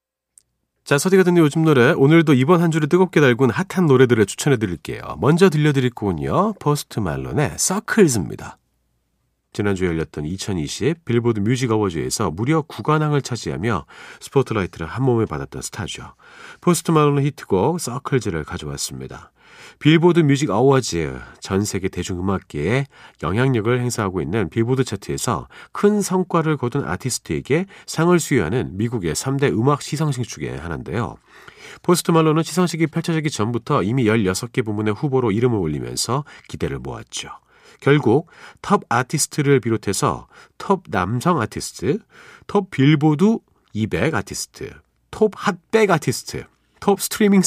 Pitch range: 105-165 Hz